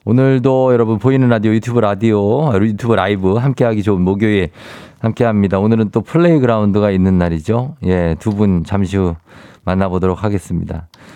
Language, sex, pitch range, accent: Korean, male, 95-125 Hz, native